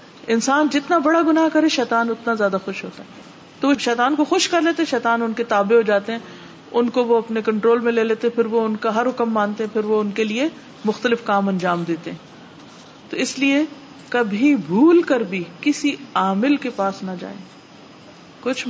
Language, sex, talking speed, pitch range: Urdu, female, 200 wpm, 220-280 Hz